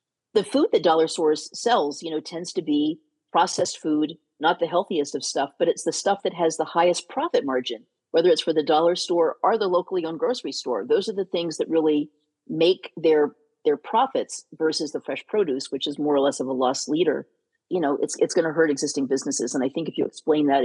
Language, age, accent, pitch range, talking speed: English, 40-59, American, 140-180 Hz, 230 wpm